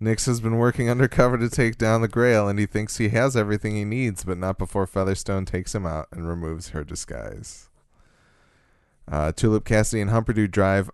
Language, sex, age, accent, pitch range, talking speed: English, male, 20-39, American, 85-110 Hz, 190 wpm